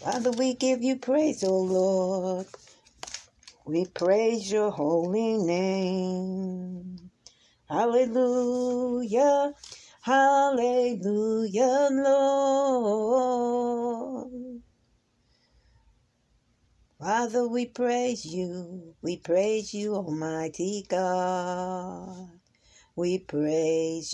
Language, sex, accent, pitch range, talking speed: English, female, American, 185-255 Hz, 65 wpm